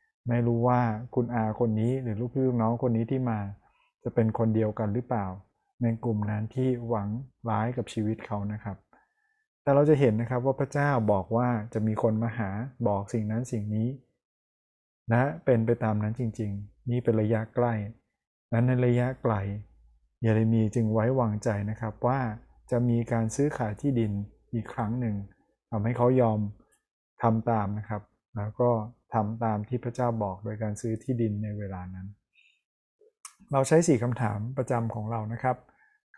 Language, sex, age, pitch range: Thai, male, 20-39, 110-125 Hz